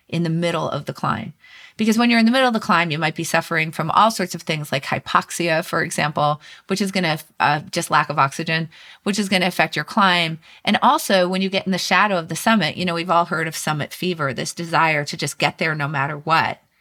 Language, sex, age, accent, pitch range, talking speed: English, female, 30-49, American, 165-200 Hz, 255 wpm